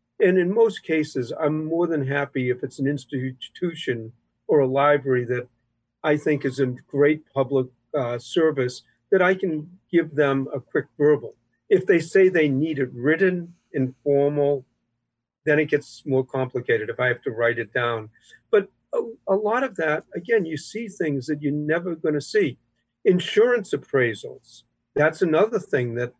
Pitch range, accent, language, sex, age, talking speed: 130-190 Hz, American, English, male, 50-69, 170 wpm